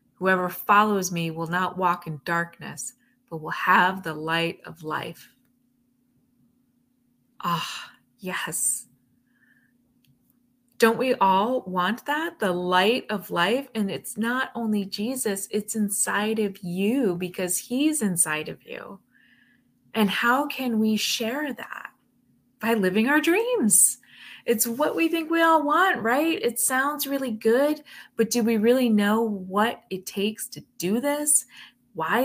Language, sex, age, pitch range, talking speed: English, female, 20-39, 180-245 Hz, 140 wpm